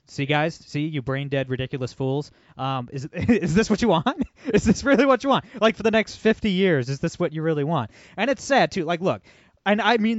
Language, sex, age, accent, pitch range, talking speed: English, male, 20-39, American, 130-175 Hz, 240 wpm